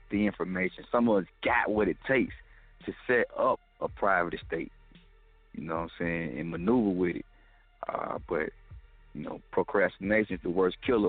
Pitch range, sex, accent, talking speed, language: 85-100 Hz, male, American, 180 wpm, English